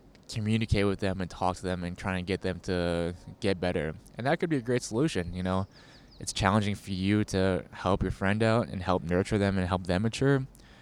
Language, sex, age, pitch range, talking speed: English, male, 20-39, 90-105 Hz, 225 wpm